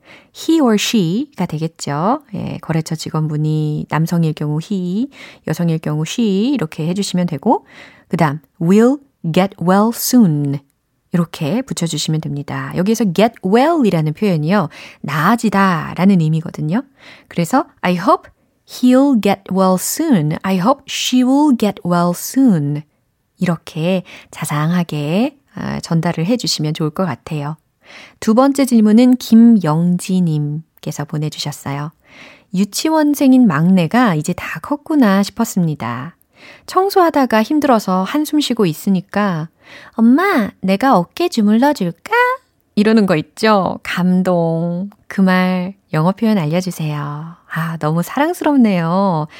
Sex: female